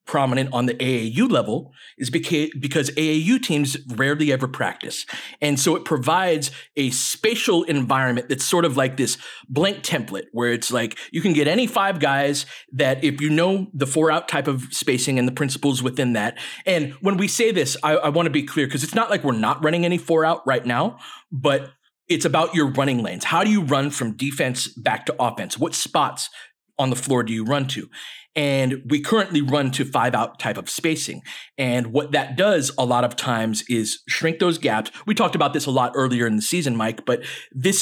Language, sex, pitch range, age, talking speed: English, male, 130-160 Hz, 30-49, 210 wpm